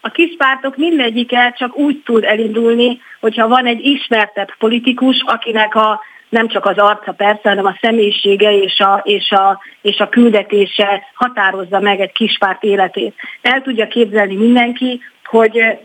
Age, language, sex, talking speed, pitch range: 30-49, Hungarian, female, 150 wpm, 210-265 Hz